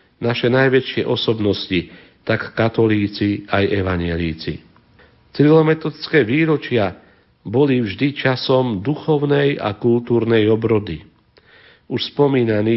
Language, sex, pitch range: Slovak, male, 105-135 Hz